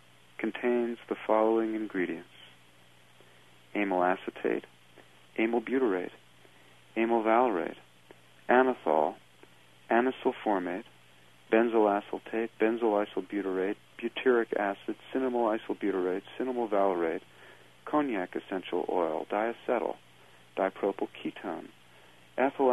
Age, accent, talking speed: 50-69, American, 80 wpm